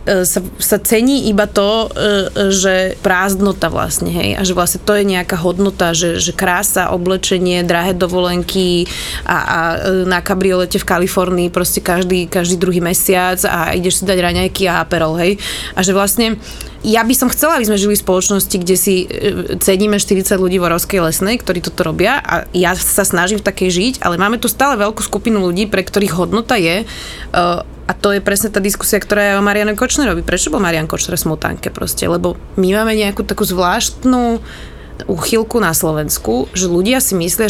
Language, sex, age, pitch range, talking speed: Slovak, female, 20-39, 180-205 Hz, 185 wpm